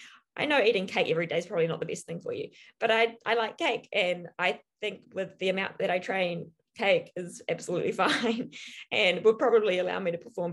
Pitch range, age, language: 160-225 Hz, 20-39, English